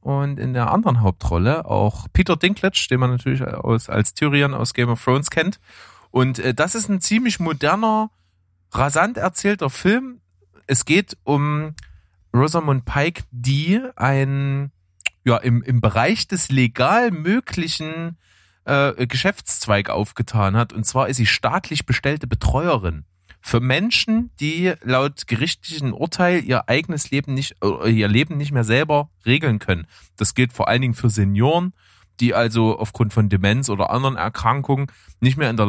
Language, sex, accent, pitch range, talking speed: German, male, German, 110-150 Hz, 145 wpm